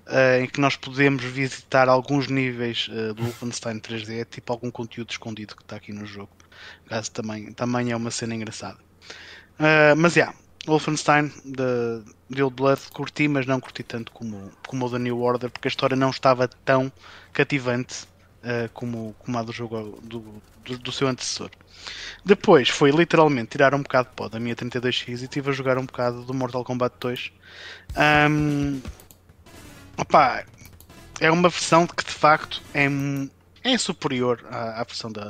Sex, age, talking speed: male, 20-39, 170 wpm